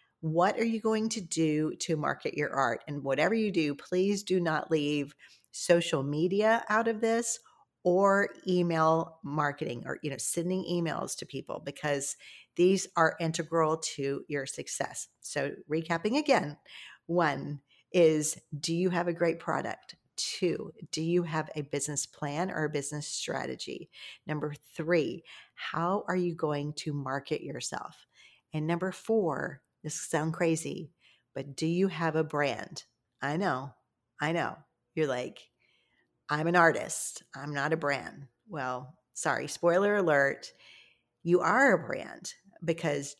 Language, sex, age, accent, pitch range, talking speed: English, female, 40-59, American, 145-175 Hz, 145 wpm